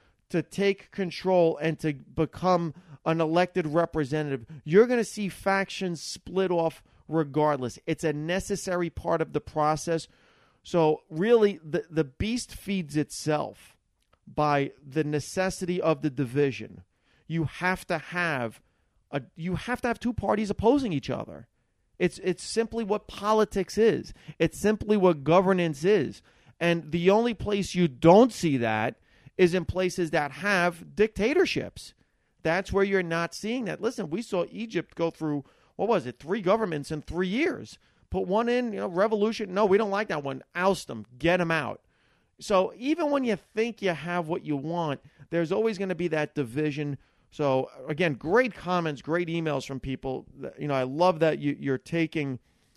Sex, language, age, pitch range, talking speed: male, English, 40-59, 150-195 Hz, 165 wpm